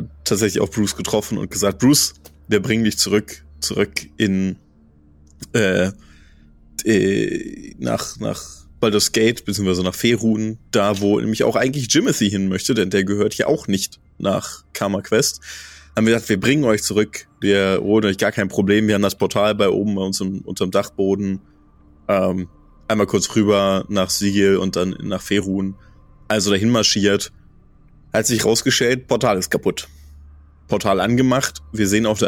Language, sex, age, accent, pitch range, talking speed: German, male, 20-39, German, 75-105 Hz, 160 wpm